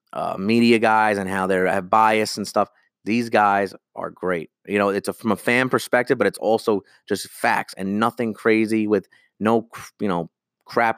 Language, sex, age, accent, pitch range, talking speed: English, male, 30-49, American, 100-125 Hz, 180 wpm